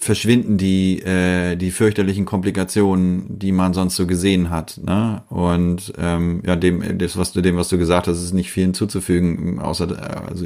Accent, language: German, German